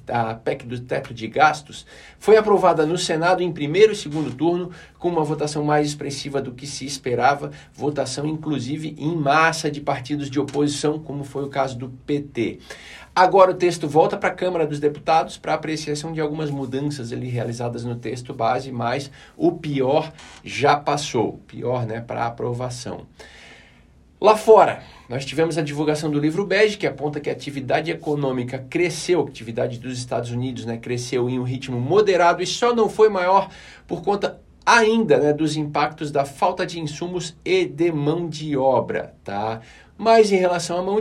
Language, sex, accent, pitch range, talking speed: Portuguese, male, Brazilian, 135-170 Hz, 175 wpm